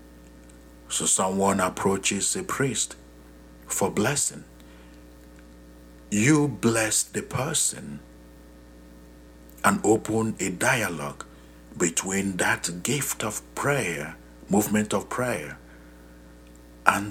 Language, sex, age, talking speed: English, male, 60-79, 85 wpm